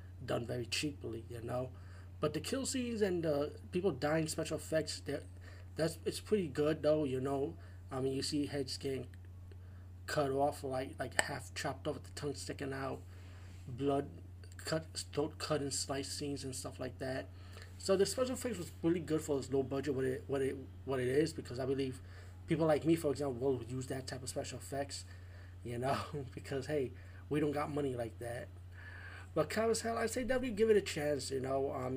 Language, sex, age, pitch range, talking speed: English, male, 30-49, 90-150 Hz, 205 wpm